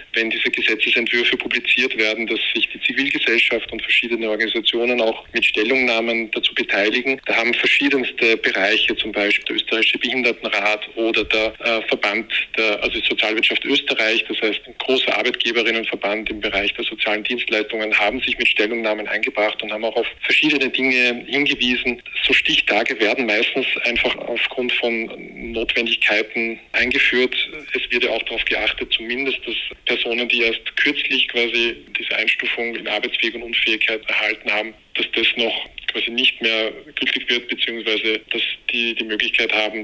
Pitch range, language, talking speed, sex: 110-120 Hz, German, 150 wpm, male